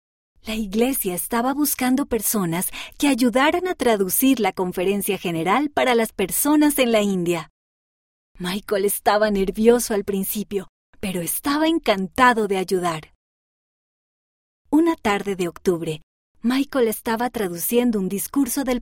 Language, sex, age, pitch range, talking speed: Spanish, female, 30-49, 185-255 Hz, 120 wpm